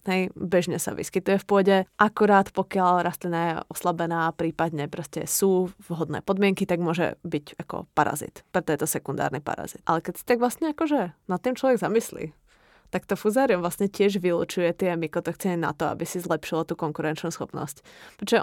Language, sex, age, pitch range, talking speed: Czech, female, 20-39, 160-195 Hz, 170 wpm